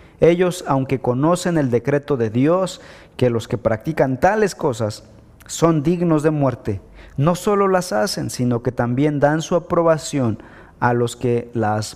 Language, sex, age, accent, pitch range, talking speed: Spanish, male, 40-59, Mexican, 110-175 Hz, 155 wpm